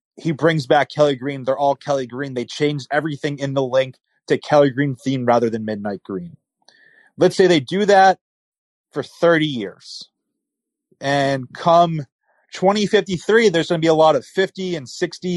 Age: 30-49